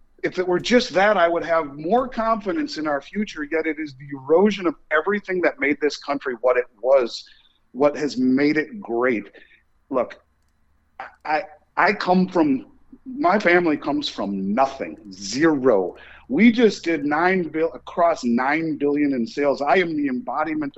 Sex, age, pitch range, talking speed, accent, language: male, 50-69, 125-175 Hz, 165 wpm, American, English